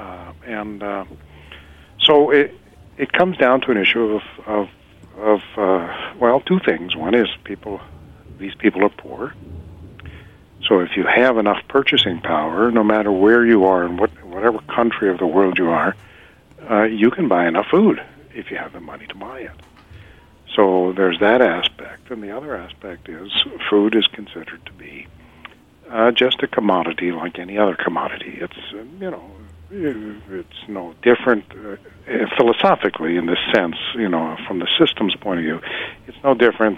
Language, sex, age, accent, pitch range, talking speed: English, male, 60-79, American, 90-115 Hz, 170 wpm